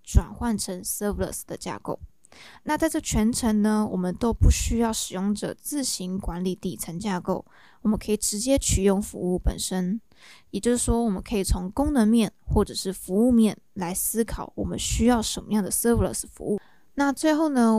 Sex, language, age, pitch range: female, Chinese, 20-39, 190-230 Hz